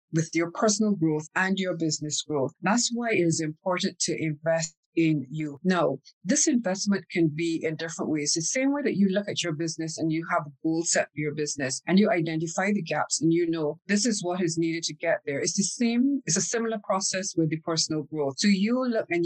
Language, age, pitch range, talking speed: English, 50-69, 160-195 Hz, 230 wpm